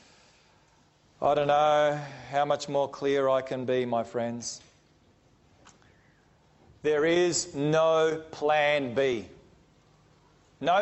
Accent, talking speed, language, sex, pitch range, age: Australian, 100 wpm, English, male, 175-235 Hz, 40-59